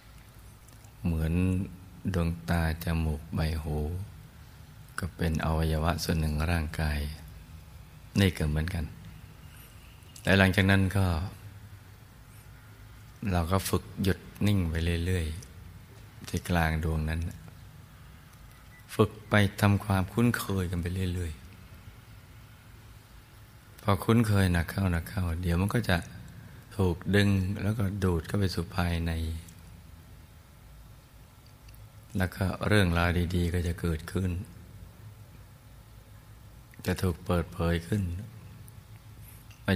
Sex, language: male, Thai